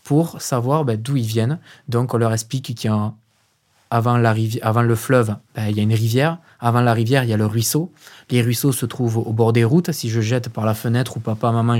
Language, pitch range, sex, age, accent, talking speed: French, 115-135 Hz, male, 20-39, French, 240 wpm